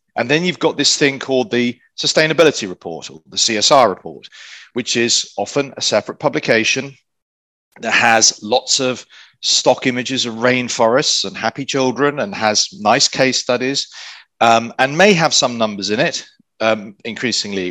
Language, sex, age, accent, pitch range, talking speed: English, male, 40-59, British, 100-135 Hz, 155 wpm